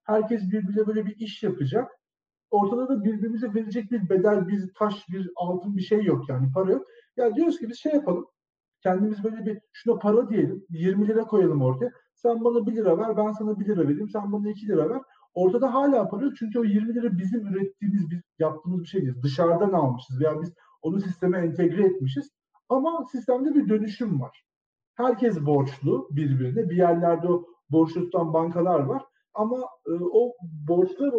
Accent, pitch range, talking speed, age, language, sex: native, 160-215 Hz, 175 wpm, 50-69, Turkish, male